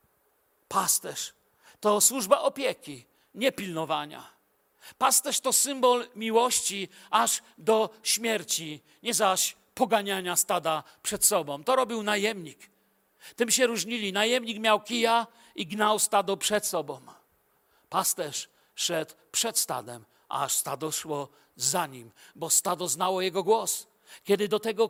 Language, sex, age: Polish, male, 50-69